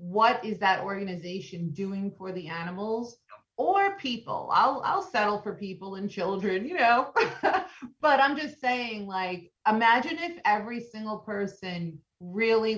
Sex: female